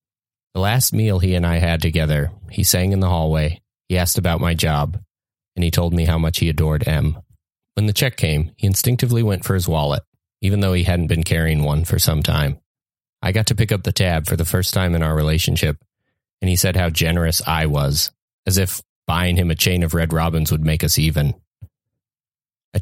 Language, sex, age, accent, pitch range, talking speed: English, male, 30-49, American, 80-100 Hz, 215 wpm